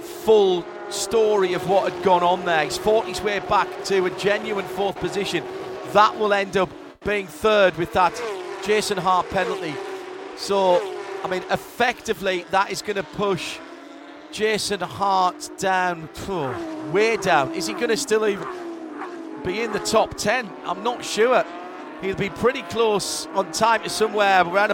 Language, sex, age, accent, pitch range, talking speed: English, male, 40-59, British, 185-245 Hz, 165 wpm